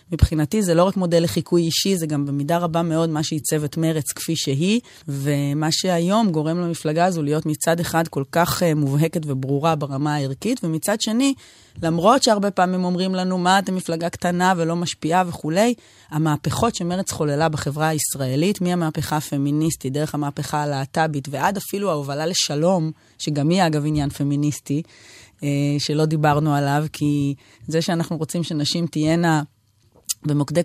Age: 20-39